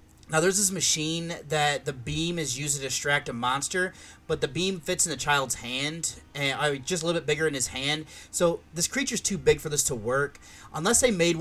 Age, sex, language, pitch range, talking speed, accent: 30-49, male, English, 140-170 Hz, 230 wpm, American